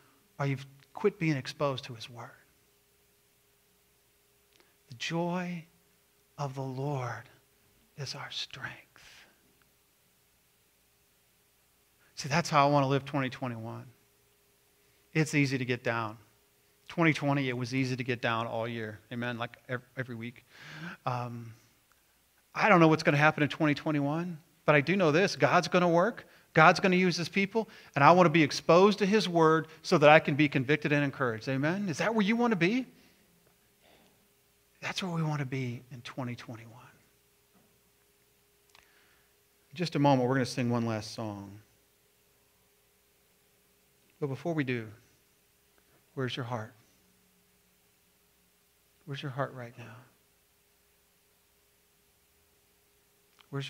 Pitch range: 120-155 Hz